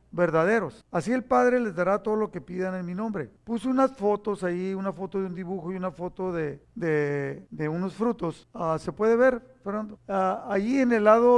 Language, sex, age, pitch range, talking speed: Spanish, male, 50-69, 175-220 Hz, 210 wpm